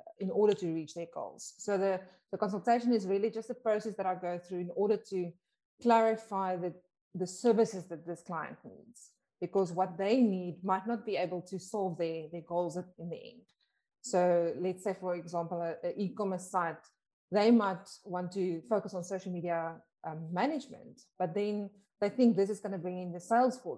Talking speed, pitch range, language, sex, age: 195 wpm, 170-205 Hz, English, female, 20-39